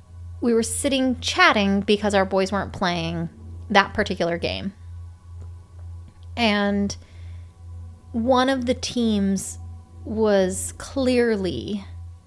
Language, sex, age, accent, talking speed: English, female, 30-49, American, 95 wpm